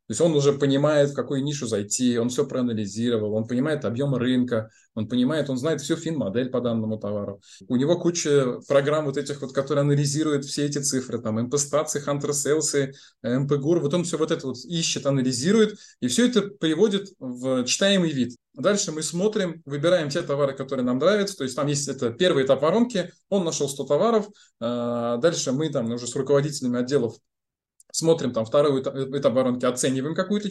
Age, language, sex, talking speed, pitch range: 20-39, Russian, male, 175 wpm, 130-185 Hz